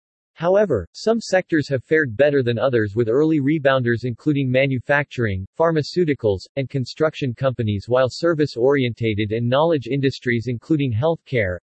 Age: 40-59